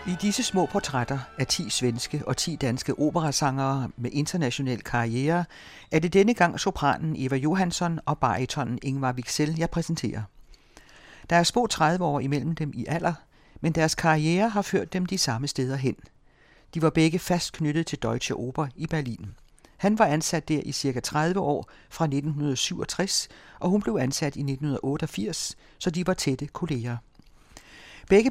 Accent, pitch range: native, 135-175 Hz